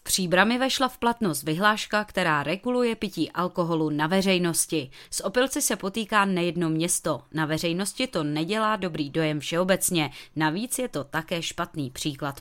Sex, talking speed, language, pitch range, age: female, 145 wpm, Czech, 155-210 Hz, 20-39